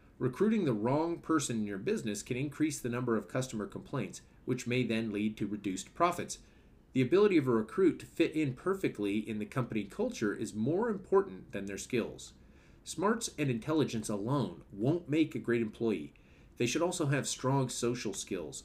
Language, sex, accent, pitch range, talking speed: English, male, American, 105-145 Hz, 180 wpm